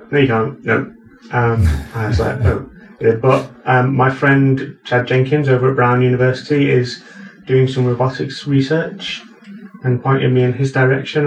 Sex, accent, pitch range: male, British, 120-140 Hz